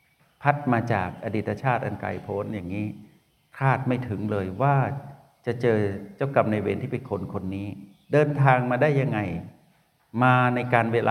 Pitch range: 105-135 Hz